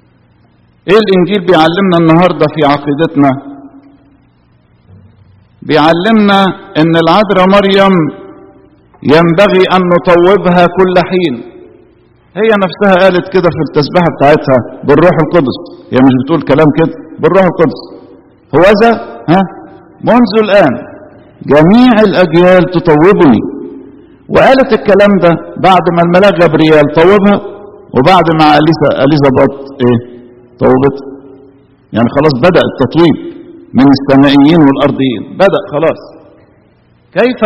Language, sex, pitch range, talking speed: English, male, 135-185 Hz, 100 wpm